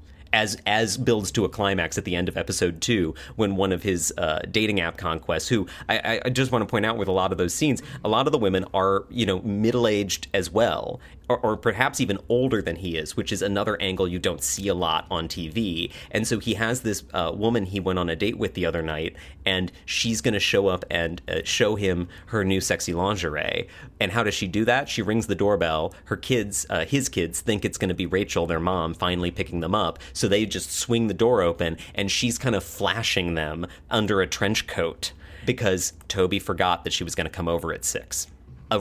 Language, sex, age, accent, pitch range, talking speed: English, male, 30-49, American, 85-110 Hz, 235 wpm